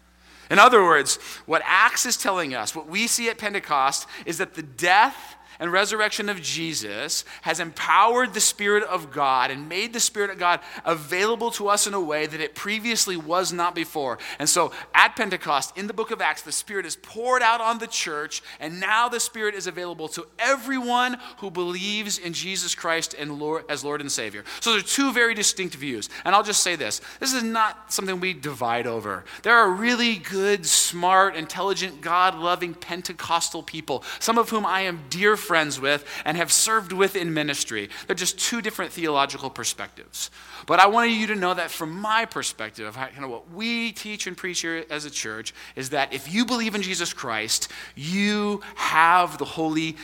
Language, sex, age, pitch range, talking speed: English, male, 30-49, 150-215 Hz, 195 wpm